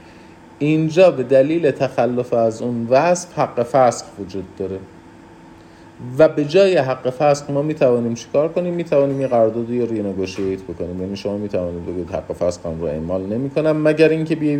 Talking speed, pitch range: 170 wpm, 95-140 Hz